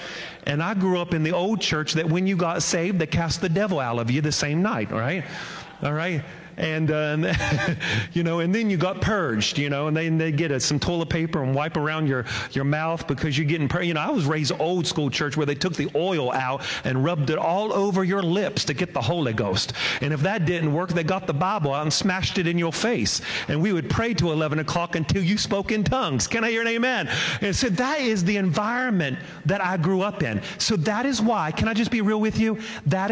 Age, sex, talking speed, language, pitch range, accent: 40-59, male, 255 wpm, English, 145-185 Hz, American